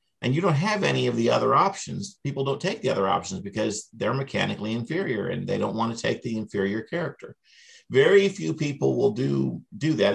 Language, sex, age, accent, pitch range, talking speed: English, male, 50-69, American, 110-135 Hz, 205 wpm